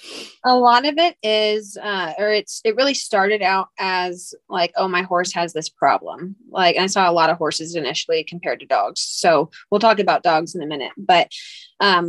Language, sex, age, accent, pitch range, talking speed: English, female, 20-39, American, 185-240 Hz, 205 wpm